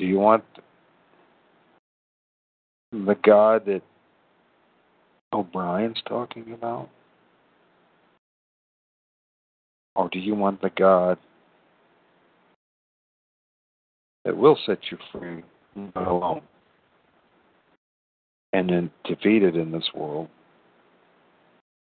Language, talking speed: English, 75 wpm